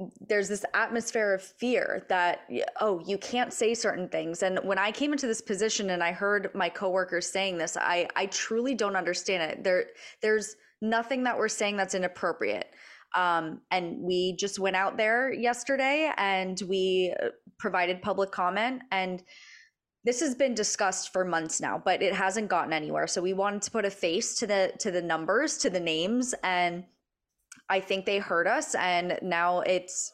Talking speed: 180 wpm